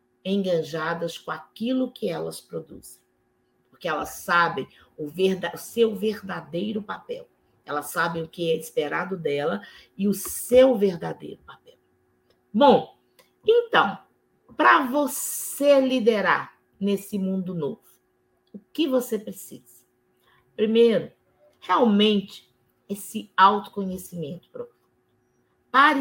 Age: 40-59